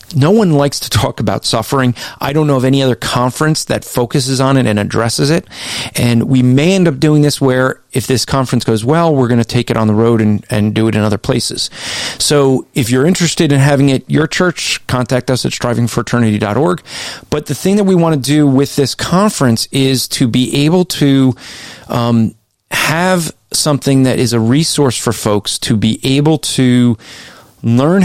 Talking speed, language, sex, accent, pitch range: 195 wpm, English, male, American, 120-150 Hz